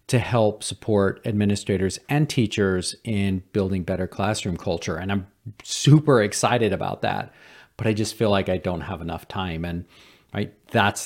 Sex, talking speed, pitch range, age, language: male, 155 wpm, 95-115 Hz, 40-59, English